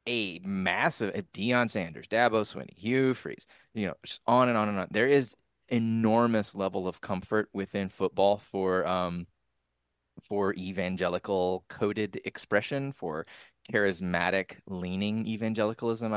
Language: English